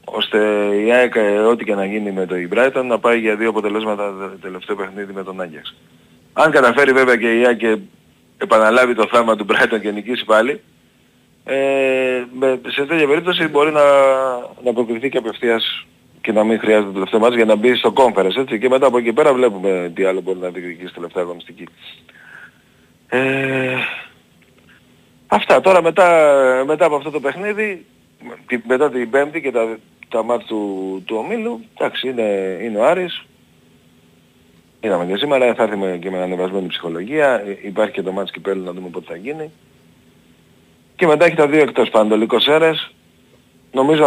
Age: 40-59